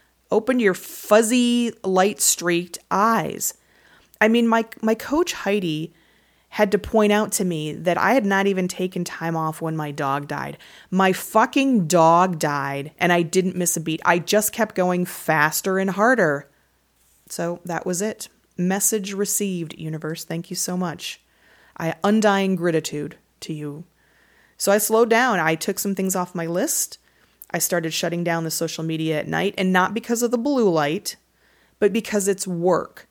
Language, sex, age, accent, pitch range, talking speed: English, female, 30-49, American, 165-200 Hz, 170 wpm